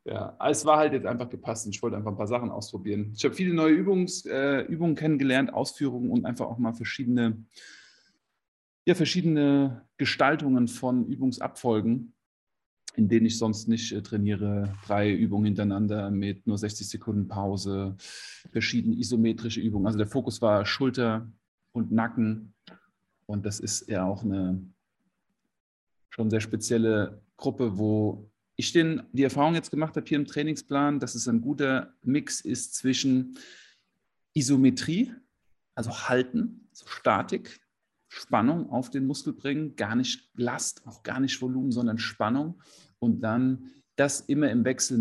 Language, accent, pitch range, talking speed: German, German, 105-135 Hz, 145 wpm